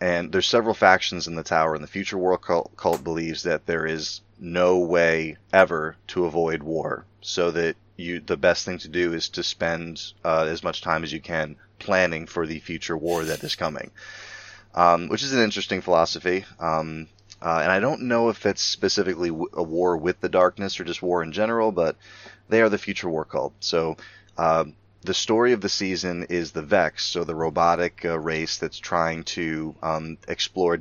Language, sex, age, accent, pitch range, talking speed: English, male, 30-49, American, 80-95 Hz, 195 wpm